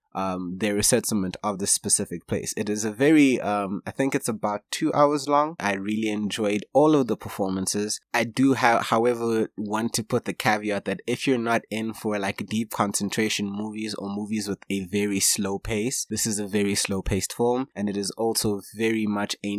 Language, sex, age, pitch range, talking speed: English, male, 20-39, 100-120 Hz, 200 wpm